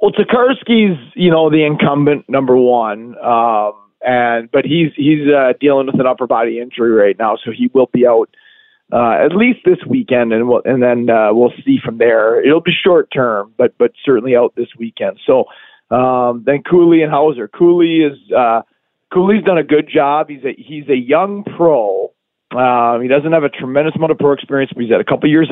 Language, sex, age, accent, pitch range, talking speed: English, male, 40-59, American, 125-160 Hz, 205 wpm